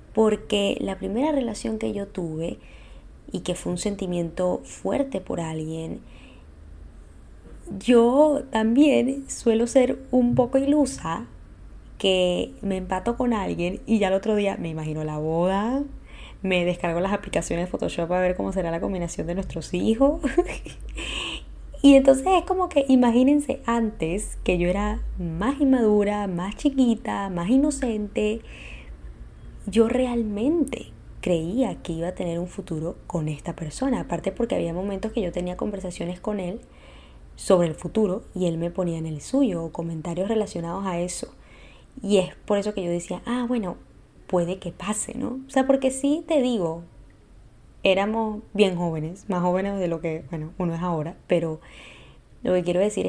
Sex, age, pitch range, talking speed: female, 20-39, 170-230 Hz, 160 wpm